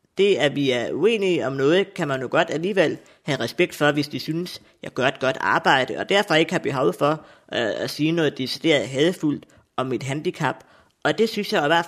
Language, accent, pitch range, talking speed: Danish, native, 135-170 Hz, 220 wpm